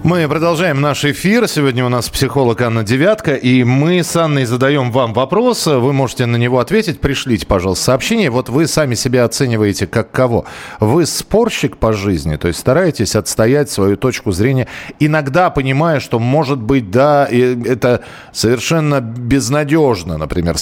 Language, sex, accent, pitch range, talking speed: Russian, male, native, 120-175 Hz, 155 wpm